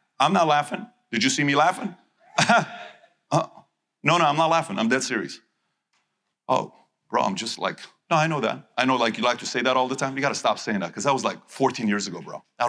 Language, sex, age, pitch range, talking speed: English, male, 40-59, 170-220 Hz, 240 wpm